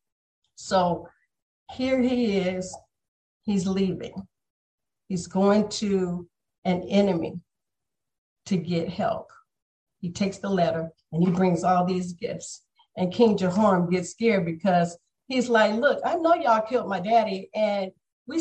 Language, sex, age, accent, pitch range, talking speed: English, female, 50-69, American, 175-215 Hz, 135 wpm